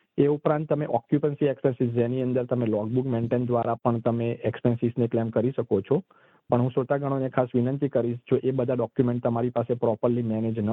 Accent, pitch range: native, 115-130 Hz